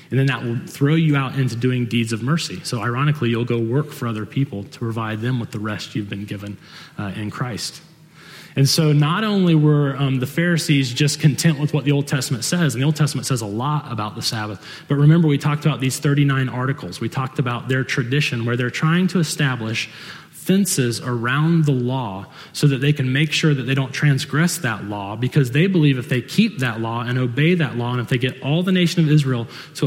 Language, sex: English, male